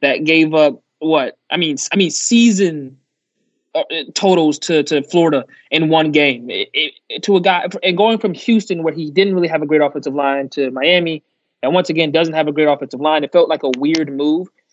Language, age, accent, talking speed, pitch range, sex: English, 20-39, American, 210 wpm, 150-180 Hz, male